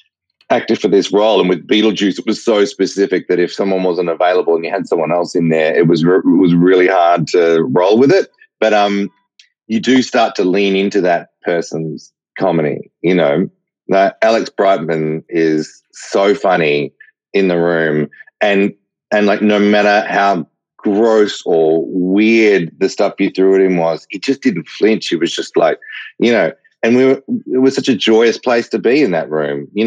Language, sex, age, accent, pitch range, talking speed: English, male, 30-49, Australian, 90-105 Hz, 195 wpm